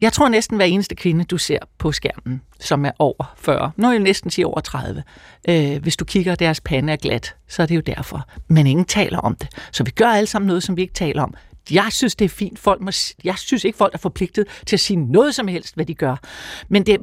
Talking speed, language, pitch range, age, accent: 255 wpm, Danish, 155-210 Hz, 60-79, native